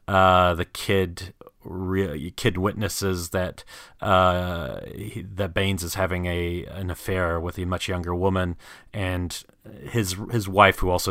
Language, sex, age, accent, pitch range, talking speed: English, male, 30-49, American, 90-100 Hz, 145 wpm